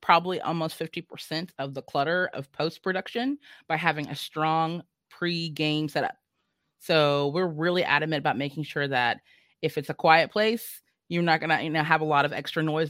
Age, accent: 20-39, American